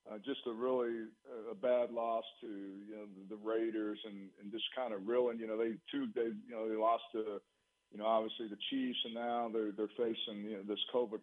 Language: English